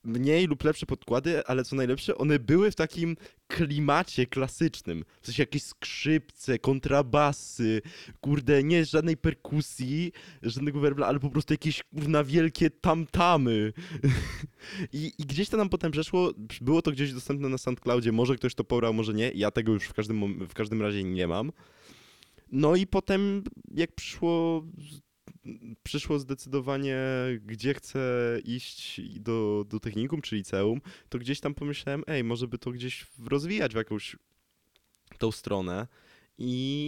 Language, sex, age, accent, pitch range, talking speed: Polish, male, 20-39, native, 105-150 Hz, 150 wpm